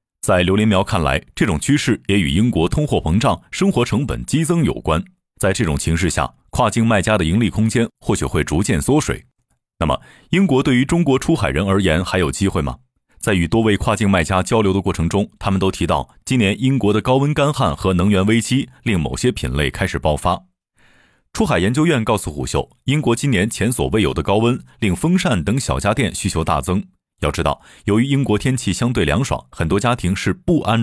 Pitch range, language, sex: 90-130 Hz, Chinese, male